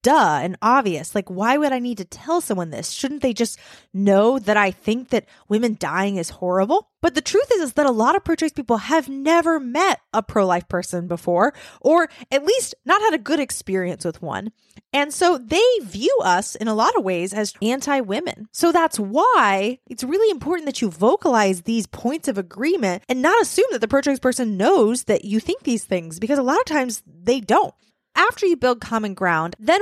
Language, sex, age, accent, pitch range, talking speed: English, female, 20-39, American, 210-310 Hz, 205 wpm